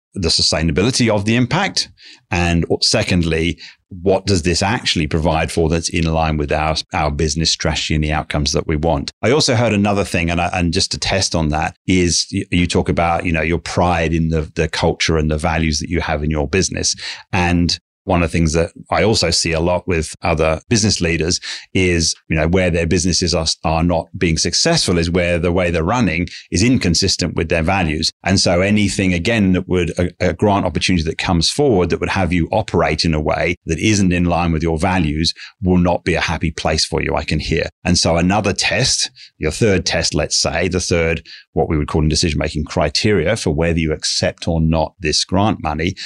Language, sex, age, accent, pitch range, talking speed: English, male, 30-49, British, 80-95 Hz, 215 wpm